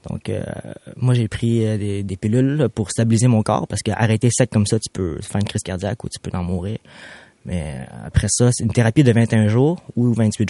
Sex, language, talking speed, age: male, French, 230 wpm, 20-39